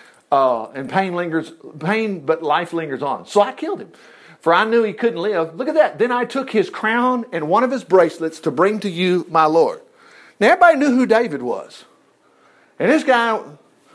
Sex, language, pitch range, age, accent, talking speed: male, English, 160-220 Hz, 50-69, American, 200 wpm